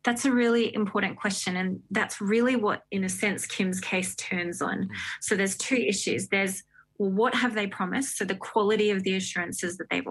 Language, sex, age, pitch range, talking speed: English, female, 20-39, 180-215 Hz, 195 wpm